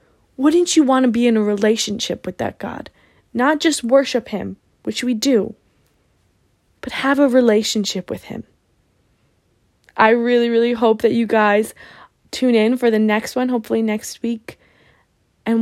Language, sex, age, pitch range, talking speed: English, female, 20-39, 215-245 Hz, 160 wpm